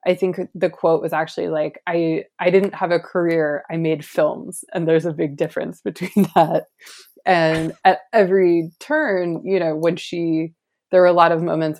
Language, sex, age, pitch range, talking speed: English, female, 20-39, 155-180 Hz, 190 wpm